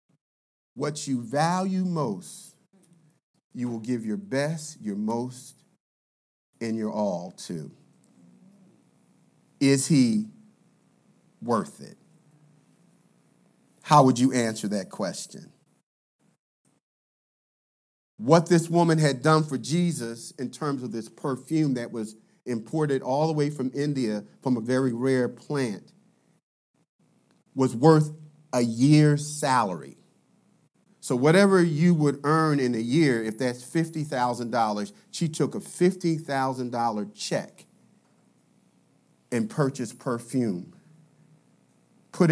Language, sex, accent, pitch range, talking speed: English, male, American, 125-175 Hz, 105 wpm